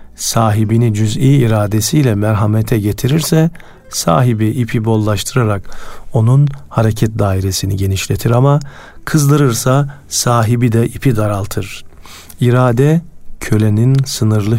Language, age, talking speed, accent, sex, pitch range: Turkish, 50-69, 85 wpm, native, male, 100-130 Hz